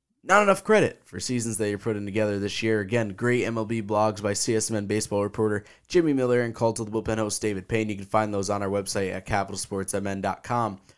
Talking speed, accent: 210 wpm, American